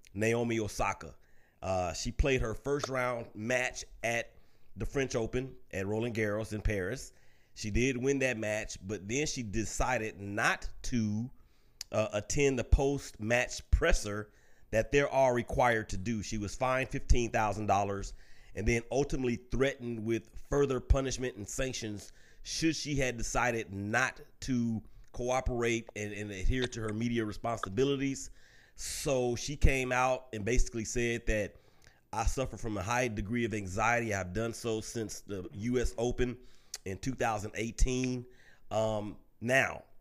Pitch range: 110-130 Hz